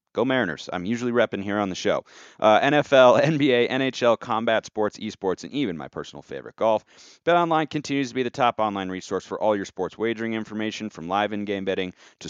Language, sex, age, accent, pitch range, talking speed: English, male, 30-49, American, 100-130 Hz, 200 wpm